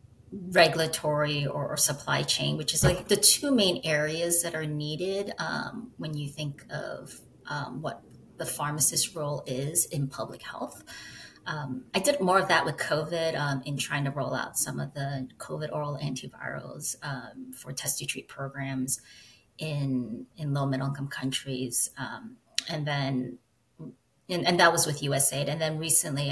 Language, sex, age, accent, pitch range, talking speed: English, female, 30-49, American, 135-170 Hz, 165 wpm